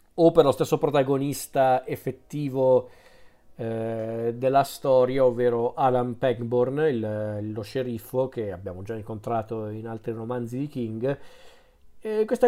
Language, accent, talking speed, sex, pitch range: Italian, native, 120 wpm, male, 125-165 Hz